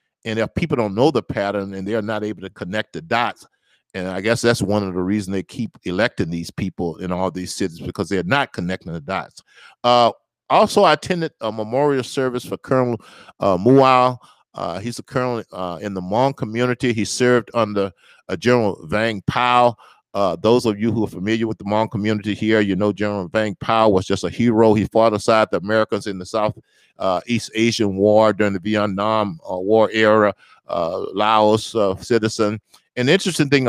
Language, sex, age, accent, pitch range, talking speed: English, male, 50-69, American, 100-120 Hz, 200 wpm